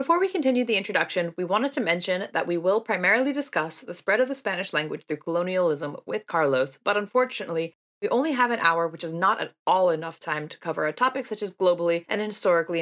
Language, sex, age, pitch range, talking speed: English, female, 20-39, 160-230 Hz, 220 wpm